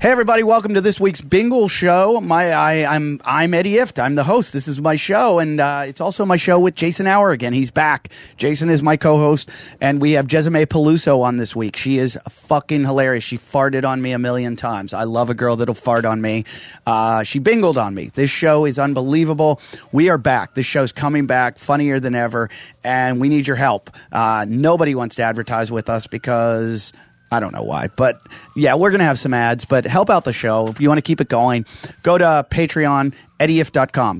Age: 30-49